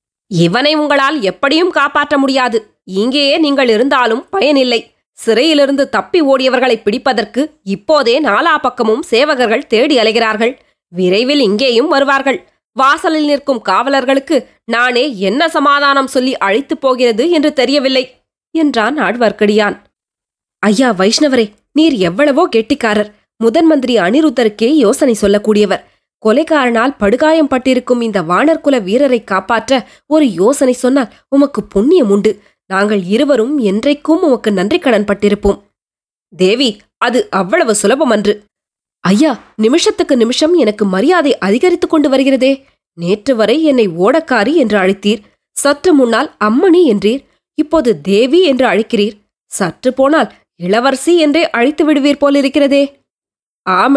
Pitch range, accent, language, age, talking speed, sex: 215-290 Hz, native, Tamil, 20-39, 100 wpm, female